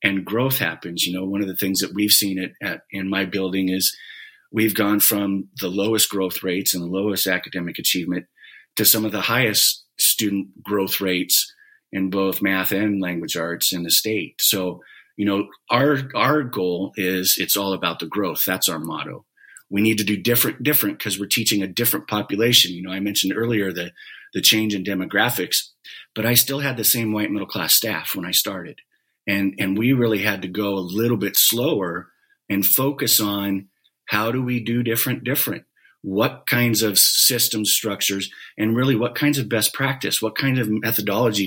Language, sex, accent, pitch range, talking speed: English, male, American, 95-115 Hz, 190 wpm